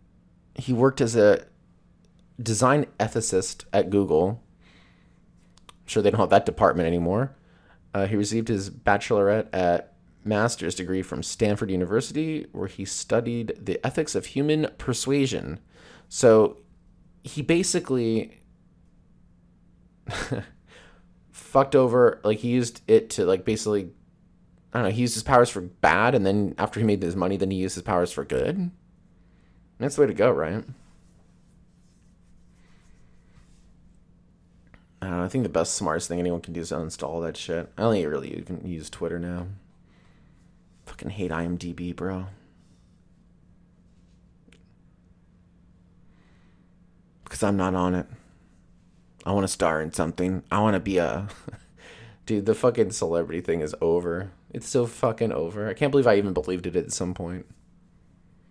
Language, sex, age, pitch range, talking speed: English, male, 30-49, 90-115 Hz, 150 wpm